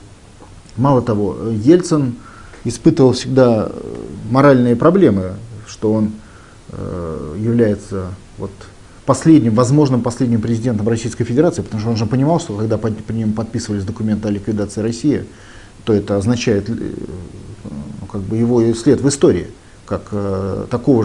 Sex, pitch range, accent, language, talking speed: male, 100-125 Hz, native, Russian, 120 wpm